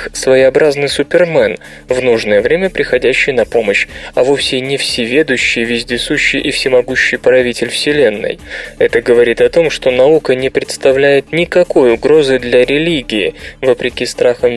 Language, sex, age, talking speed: Russian, male, 20-39, 130 wpm